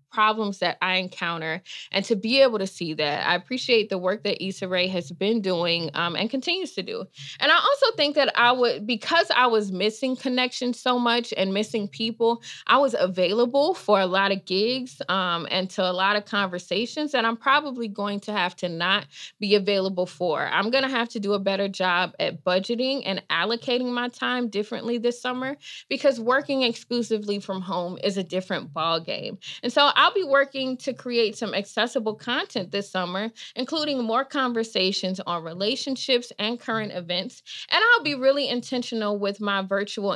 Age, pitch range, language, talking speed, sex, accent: 20-39, 190-255 Hz, English, 185 wpm, female, American